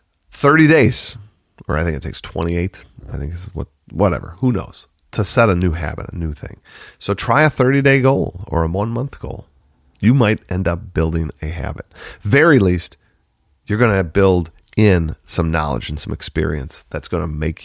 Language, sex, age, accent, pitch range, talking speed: English, male, 40-59, American, 80-105 Hz, 185 wpm